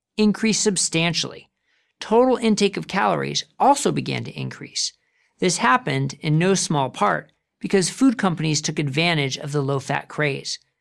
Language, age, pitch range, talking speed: English, 40-59, 150-210 Hz, 140 wpm